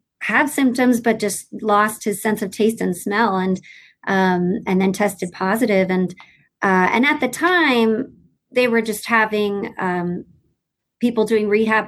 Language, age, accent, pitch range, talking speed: English, 30-49, American, 205-245 Hz, 155 wpm